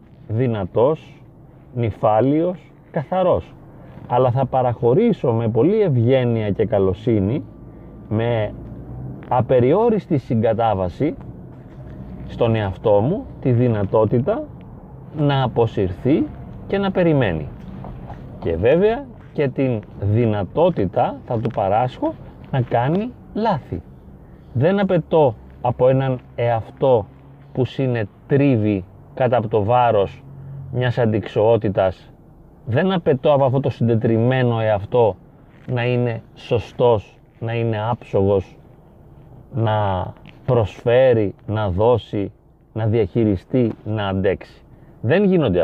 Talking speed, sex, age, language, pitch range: 95 wpm, male, 30-49, Greek, 110-140 Hz